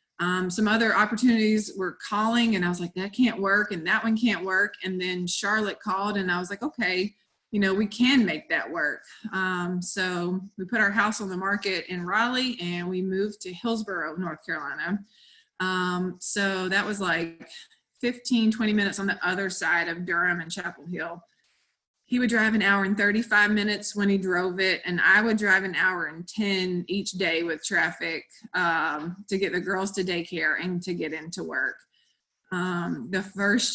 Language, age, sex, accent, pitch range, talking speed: English, 20-39, female, American, 180-210 Hz, 190 wpm